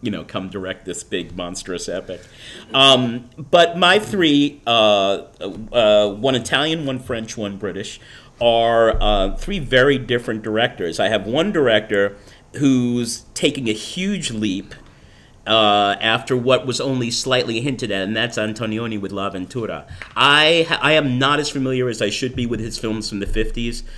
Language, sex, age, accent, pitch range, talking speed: English, male, 40-59, American, 105-140 Hz, 165 wpm